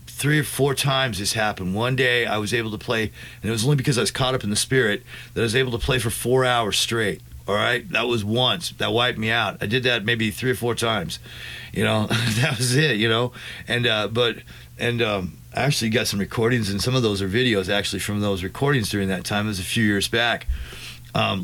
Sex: male